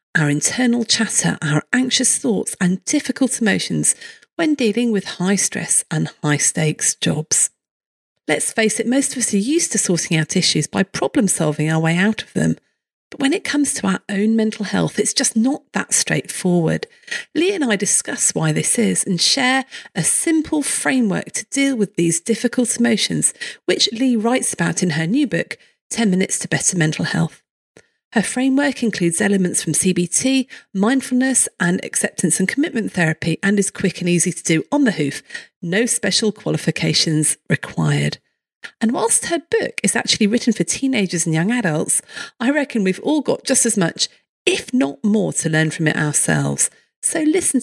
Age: 40-59